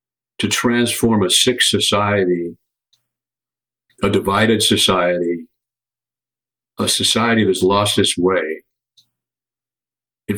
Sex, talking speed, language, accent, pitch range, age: male, 85 wpm, English, American, 95-115 Hz, 50-69